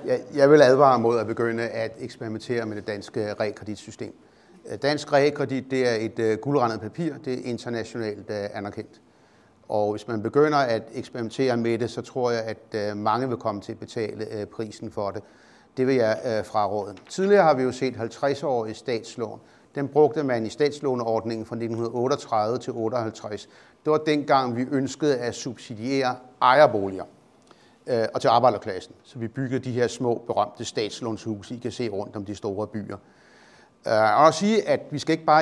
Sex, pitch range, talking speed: male, 110-145 Hz, 175 wpm